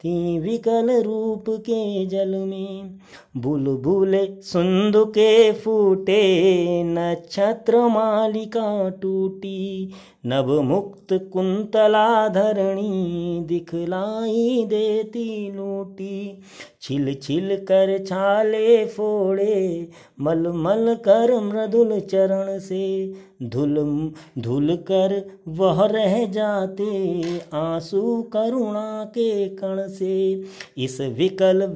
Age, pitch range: 30-49, 185-215 Hz